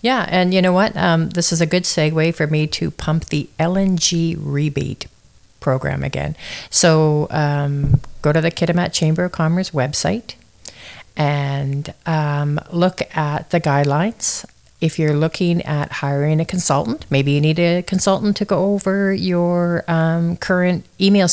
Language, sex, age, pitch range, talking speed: English, female, 50-69, 150-180 Hz, 155 wpm